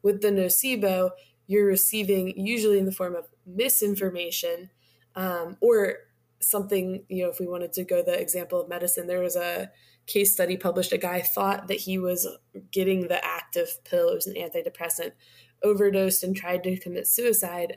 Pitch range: 180-210 Hz